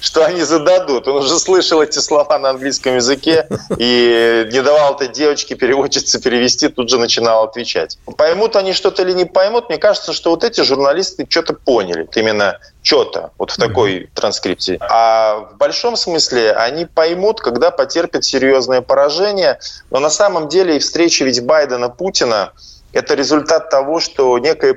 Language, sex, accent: Russian, male, native